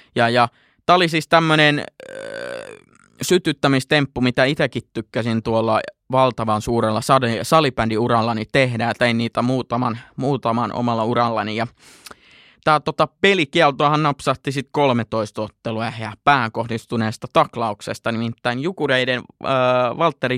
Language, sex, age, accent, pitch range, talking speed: Finnish, male, 20-39, native, 115-140 Hz, 100 wpm